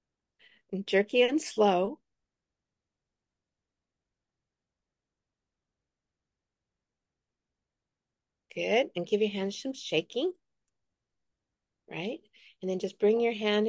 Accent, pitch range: American, 175-225 Hz